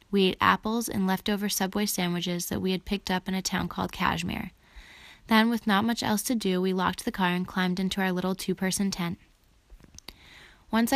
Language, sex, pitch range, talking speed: English, female, 185-205 Hz, 195 wpm